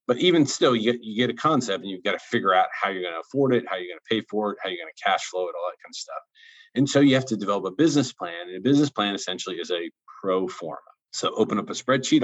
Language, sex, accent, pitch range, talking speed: English, male, American, 100-135 Hz, 300 wpm